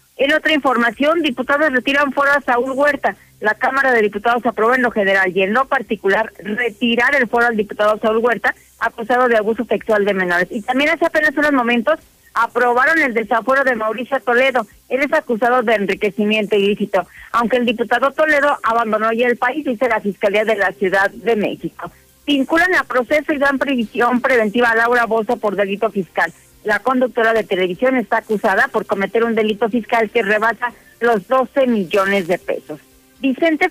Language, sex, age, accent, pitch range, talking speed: Spanish, female, 40-59, Mexican, 210-260 Hz, 180 wpm